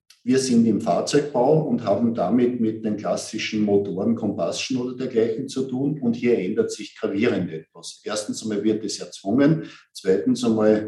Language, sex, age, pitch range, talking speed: German, male, 50-69, 110-130 Hz, 160 wpm